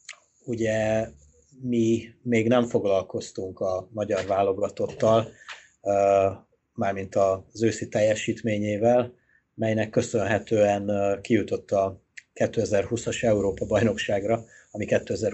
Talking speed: 75 wpm